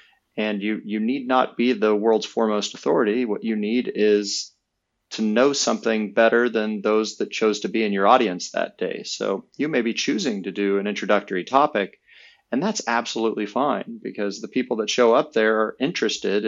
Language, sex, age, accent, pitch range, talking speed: English, male, 30-49, American, 105-125 Hz, 190 wpm